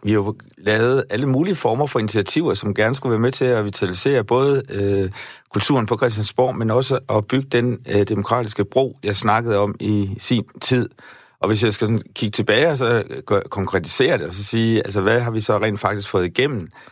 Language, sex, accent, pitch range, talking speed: Danish, male, native, 105-130 Hz, 190 wpm